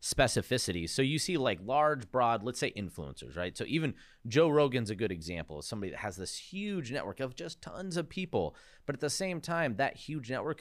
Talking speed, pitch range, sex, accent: 215 wpm, 90-130 Hz, male, American